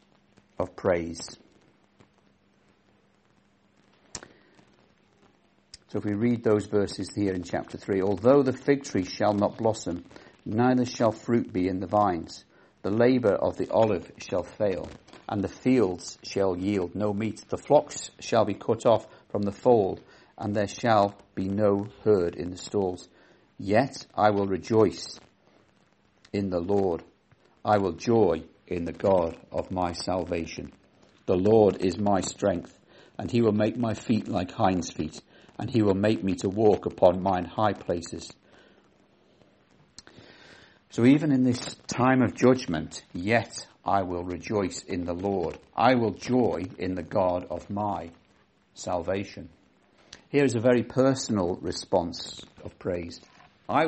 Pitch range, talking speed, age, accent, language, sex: 90-115 Hz, 145 wpm, 50-69, British, English, male